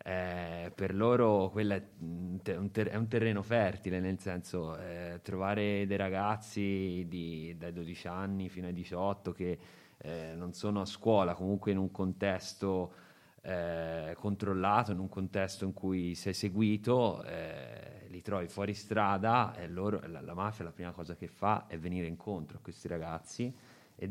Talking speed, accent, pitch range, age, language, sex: 160 wpm, native, 90-105 Hz, 30-49, Italian, male